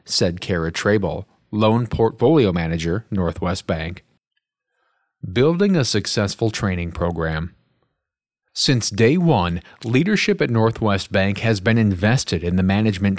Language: English